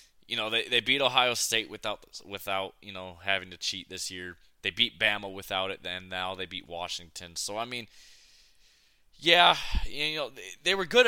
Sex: male